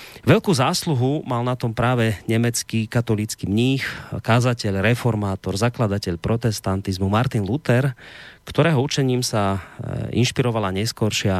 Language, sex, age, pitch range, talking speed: Slovak, male, 30-49, 105-130 Hz, 105 wpm